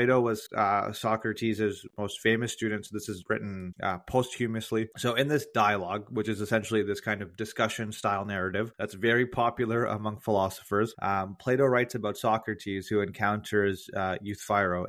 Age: 30-49